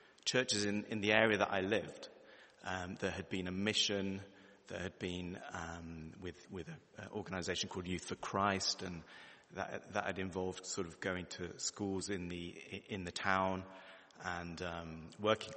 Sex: male